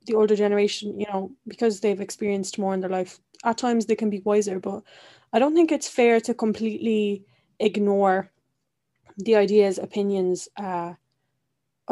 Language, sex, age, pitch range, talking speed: English, female, 20-39, 195-225 Hz, 155 wpm